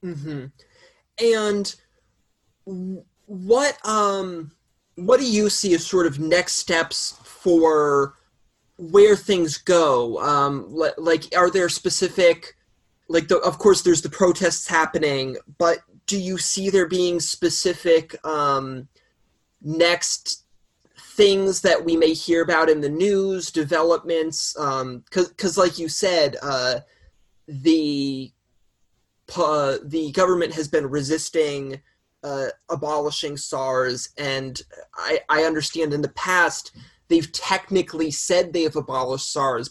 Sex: male